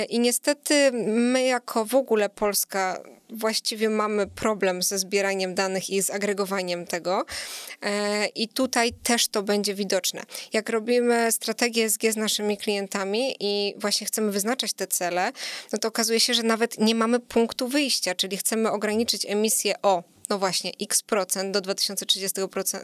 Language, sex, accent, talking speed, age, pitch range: Polish, female, native, 145 wpm, 20-39, 195-230 Hz